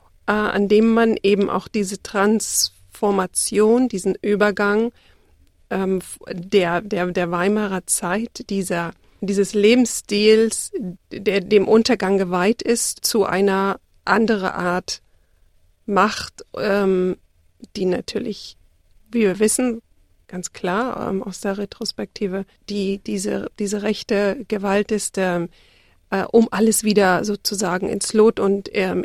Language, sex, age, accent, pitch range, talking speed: German, female, 40-59, German, 195-220 Hz, 115 wpm